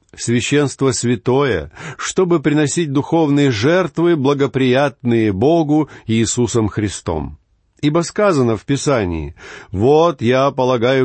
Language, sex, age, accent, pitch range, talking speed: Russian, male, 50-69, native, 105-140 Hz, 90 wpm